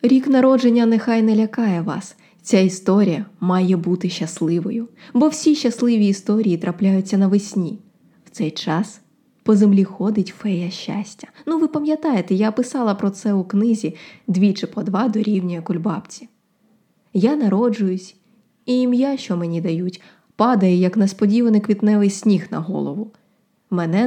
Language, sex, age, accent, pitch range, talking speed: Ukrainian, female, 20-39, native, 190-225 Hz, 135 wpm